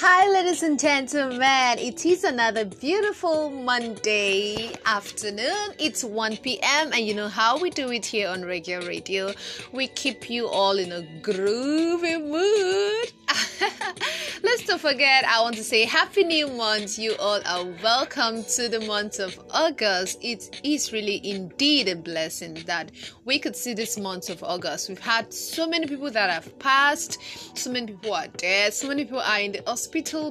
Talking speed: 165 wpm